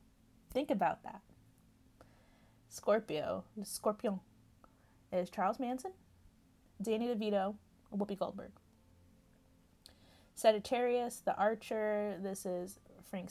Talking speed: 85 wpm